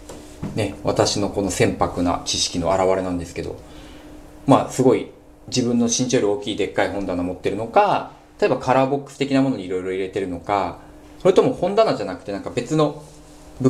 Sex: male